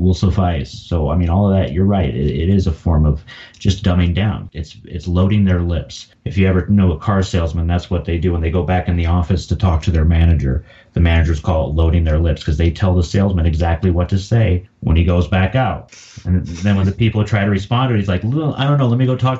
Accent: American